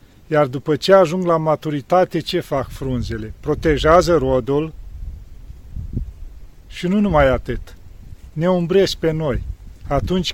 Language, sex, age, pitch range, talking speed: Romanian, male, 40-59, 105-170 Hz, 115 wpm